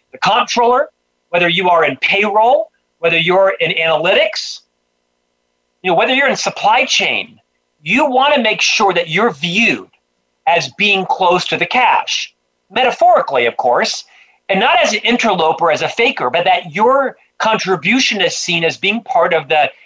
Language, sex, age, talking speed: English, male, 40-59, 165 wpm